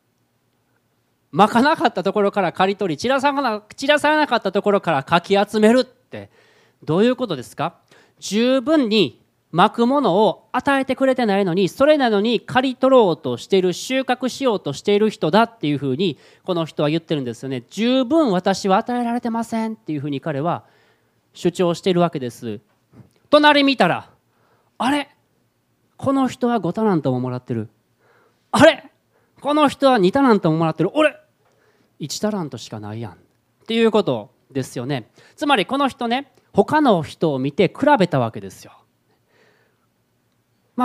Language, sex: Japanese, male